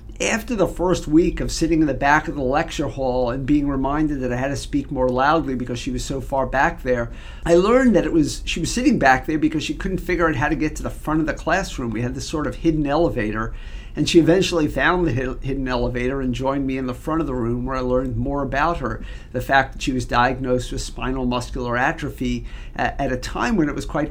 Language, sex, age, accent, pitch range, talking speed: English, male, 50-69, American, 125-155 Hz, 250 wpm